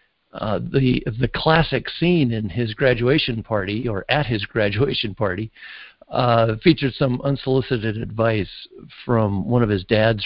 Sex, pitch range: male, 100-125 Hz